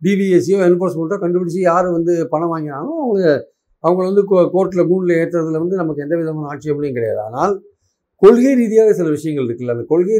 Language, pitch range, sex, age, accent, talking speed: Tamil, 155-205 Hz, male, 50-69, native, 160 wpm